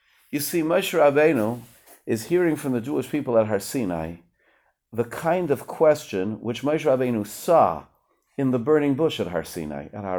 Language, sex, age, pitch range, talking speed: English, male, 50-69, 115-170 Hz, 170 wpm